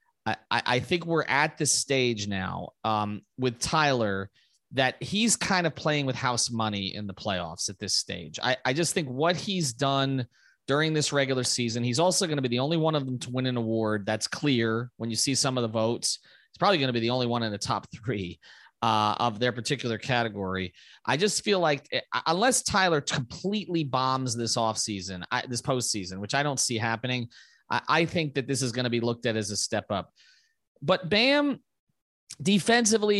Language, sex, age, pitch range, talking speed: English, male, 30-49, 115-160 Hz, 205 wpm